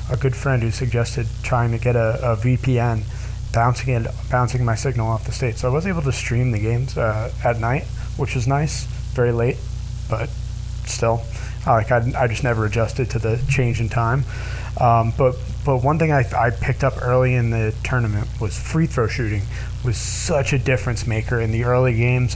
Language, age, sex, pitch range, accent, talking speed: English, 30-49, male, 110-130 Hz, American, 200 wpm